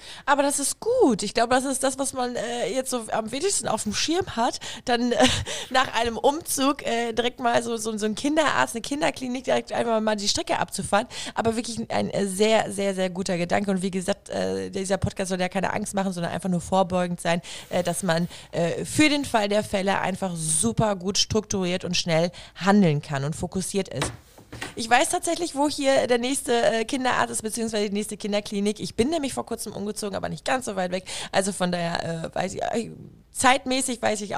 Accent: German